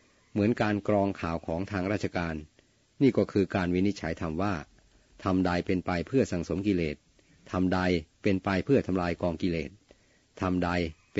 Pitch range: 90-100 Hz